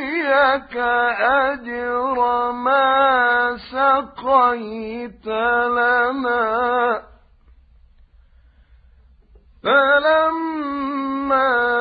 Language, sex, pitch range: Arabic, male, 195-270 Hz